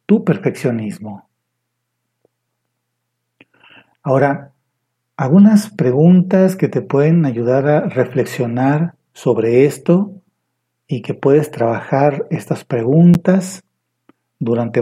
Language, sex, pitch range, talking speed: Spanish, male, 120-155 Hz, 80 wpm